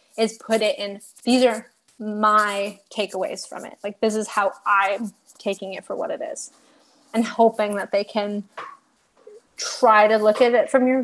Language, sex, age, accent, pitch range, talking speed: English, female, 20-39, American, 200-235 Hz, 180 wpm